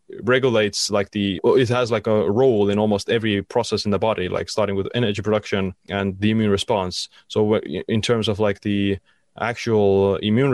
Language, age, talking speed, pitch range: English, 20-39, 180 wpm, 95-110 Hz